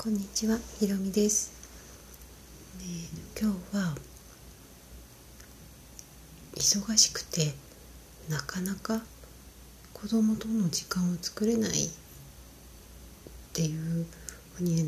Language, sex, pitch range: Japanese, female, 160-190 Hz